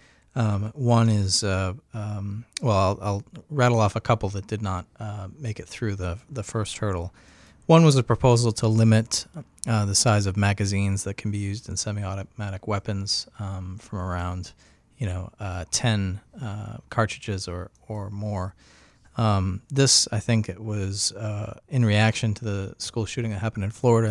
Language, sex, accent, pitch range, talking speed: English, male, American, 95-115 Hz, 175 wpm